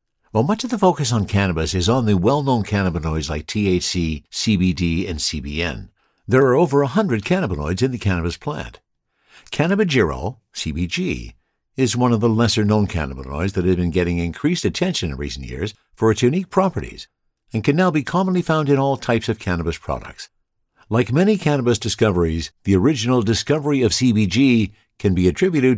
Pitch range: 90-130 Hz